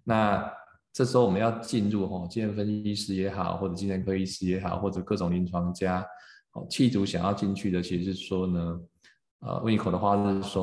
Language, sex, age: Chinese, male, 20-39